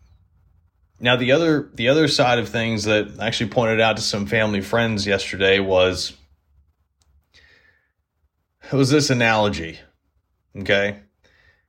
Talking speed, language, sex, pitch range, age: 125 wpm, English, male, 90-135 Hz, 30-49